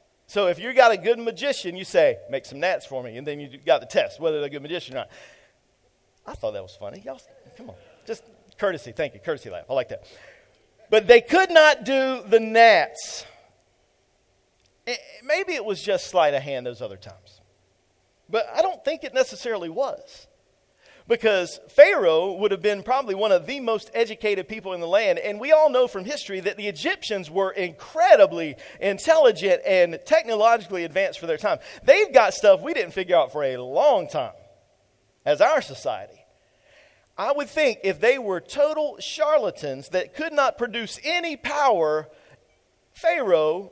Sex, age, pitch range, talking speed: male, 50-69, 185-295 Hz, 180 wpm